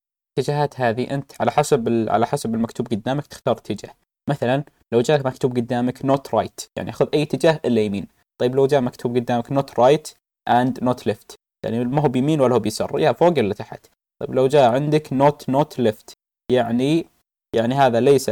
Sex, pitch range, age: male, 115-135 Hz, 20-39